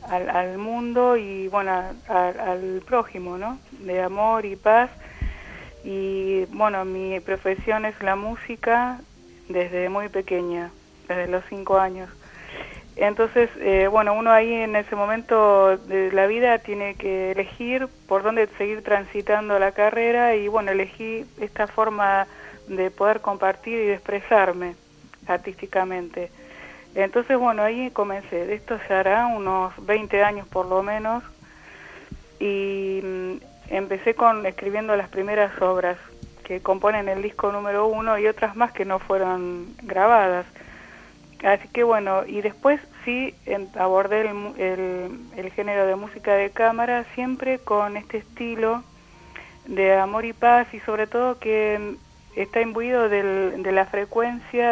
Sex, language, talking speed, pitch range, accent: female, Spanish, 135 wpm, 190-225 Hz, Argentinian